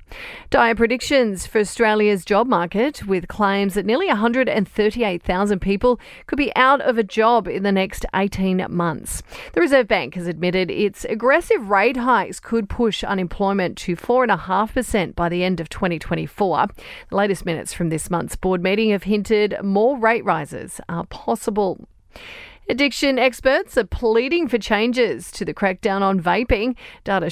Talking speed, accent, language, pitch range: 150 wpm, Australian, English, 185-245 Hz